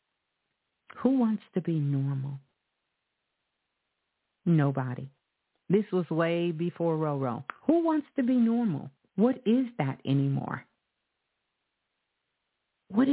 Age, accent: 50-69, American